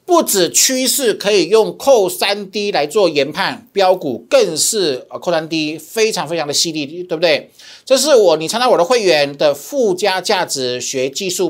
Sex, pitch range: male, 165-260 Hz